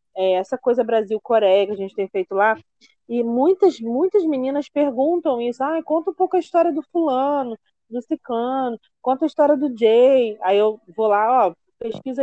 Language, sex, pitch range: Portuguese, female, 200-270 Hz